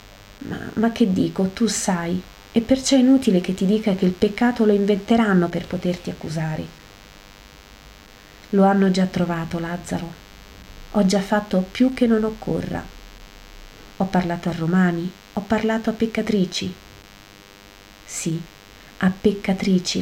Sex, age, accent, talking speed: female, 30-49, native, 130 wpm